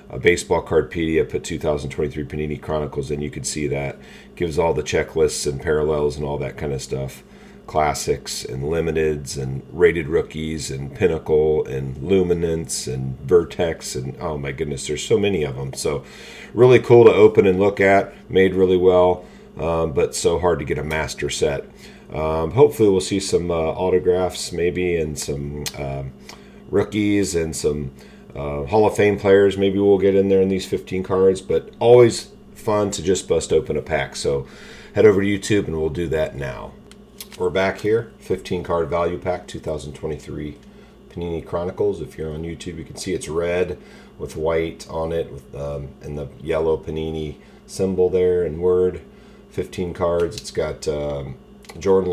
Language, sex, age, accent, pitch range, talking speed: English, male, 40-59, American, 75-95 Hz, 170 wpm